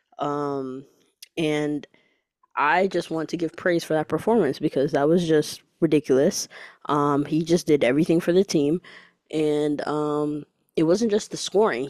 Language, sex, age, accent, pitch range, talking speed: English, female, 20-39, American, 155-210 Hz, 155 wpm